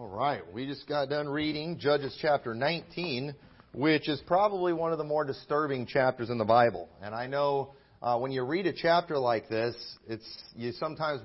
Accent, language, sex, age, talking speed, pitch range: American, English, male, 40-59, 185 wpm, 135-175 Hz